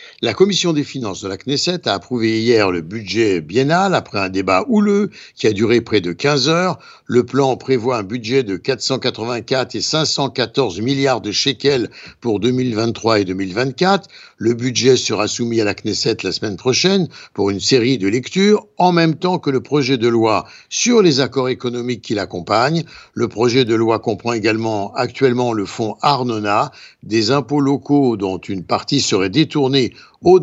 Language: French